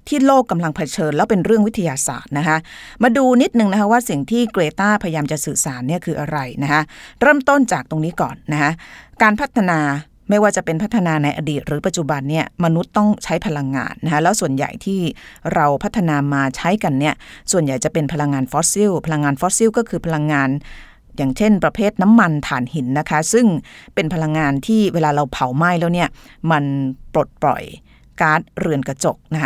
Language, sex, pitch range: Thai, female, 145-195 Hz